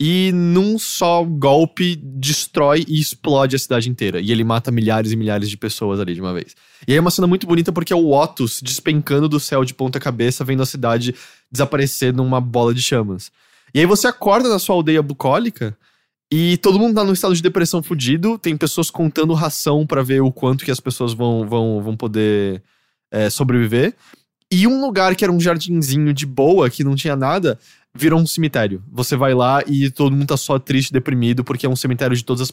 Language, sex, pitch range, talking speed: English, male, 125-175 Hz, 210 wpm